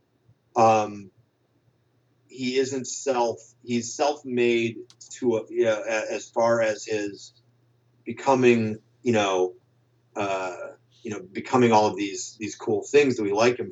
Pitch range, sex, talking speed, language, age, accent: 105-125 Hz, male, 140 wpm, English, 40-59, American